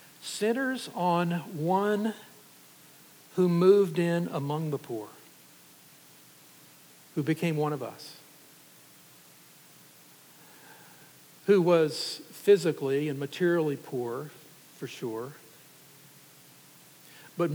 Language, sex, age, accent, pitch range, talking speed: English, male, 60-79, American, 140-170 Hz, 80 wpm